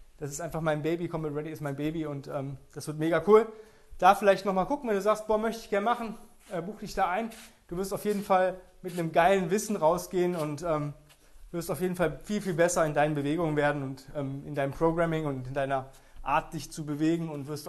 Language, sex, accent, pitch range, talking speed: German, male, German, 155-210 Hz, 240 wpm